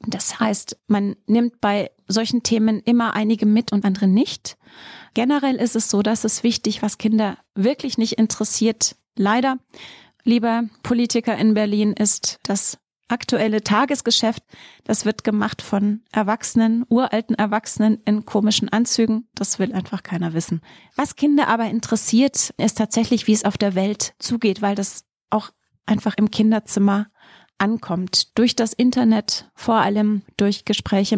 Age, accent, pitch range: 30-49, German, 200-230 Hz